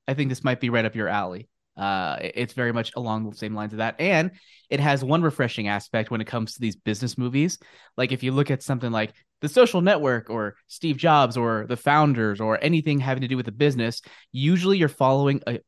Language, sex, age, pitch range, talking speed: English, male, 20-39, 110-140 Hz, 230 wpm